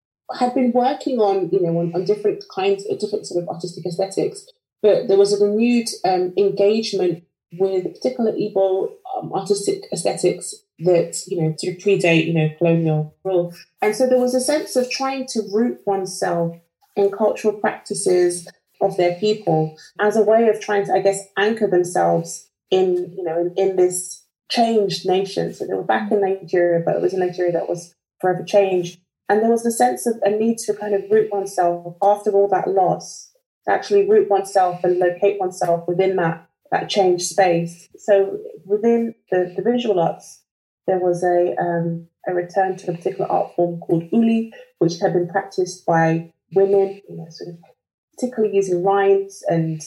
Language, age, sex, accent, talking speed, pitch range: English, 30-49, female, British, 180 wpm, 175-215 Hz